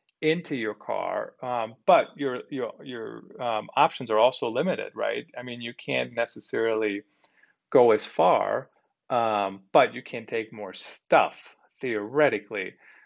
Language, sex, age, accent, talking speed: English, male, 40-59, American, 140 wpm